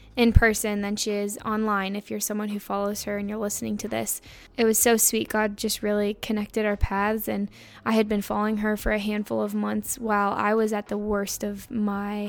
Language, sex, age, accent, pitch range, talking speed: English, female, 10-29, American, 200-225 Hz, 225 wpm